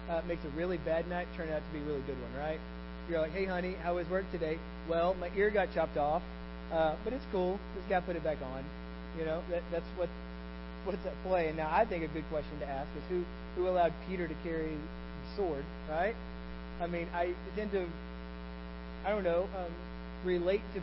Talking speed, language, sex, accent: 215 wpm, English, male, American